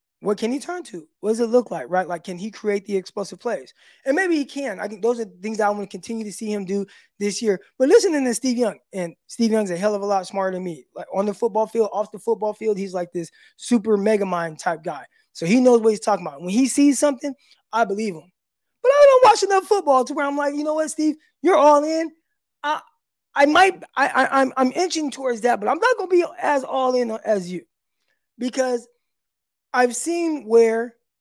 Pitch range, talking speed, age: 200-265 Hz, 245 wpm, 20-39